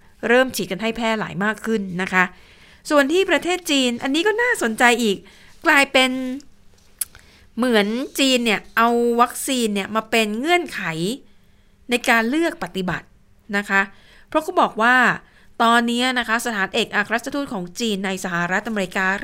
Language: Thai